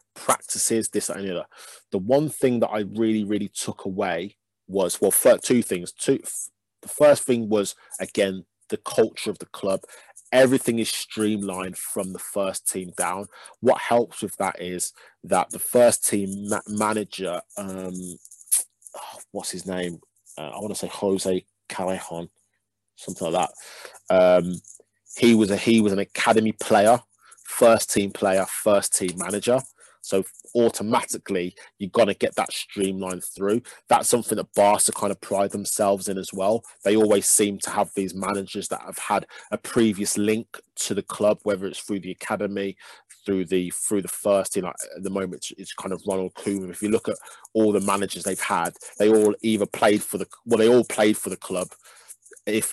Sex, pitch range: male, 95-110 Hz